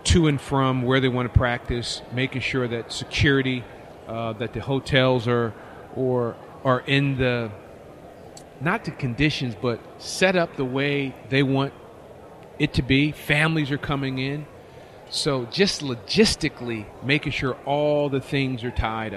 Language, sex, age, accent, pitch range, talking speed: English, male, 40-59, American, 125-145 Hz, 150 wpm